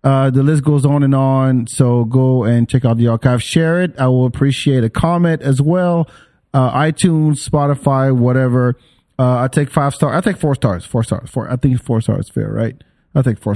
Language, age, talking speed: English, 40-59, 210 wpm